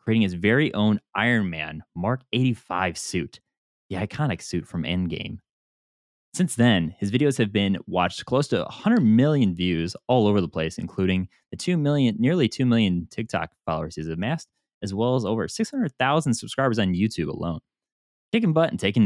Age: 20-39